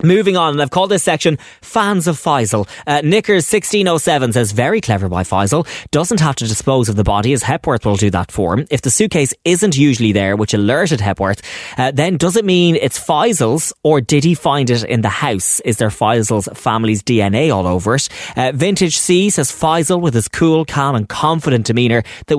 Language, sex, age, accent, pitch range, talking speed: English, male, 20-39, Irish, 110-160 Hz, 205 wpm